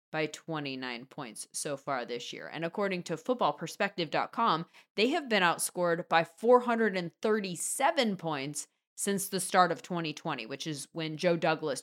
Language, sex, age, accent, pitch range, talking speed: English, female, 30-49, American, 160-210 Hz, 140 wpm